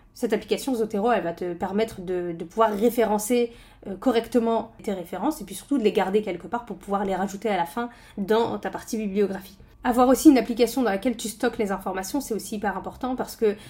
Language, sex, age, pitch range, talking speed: French, female, 20-39, 205-245 Hz, 215 wpm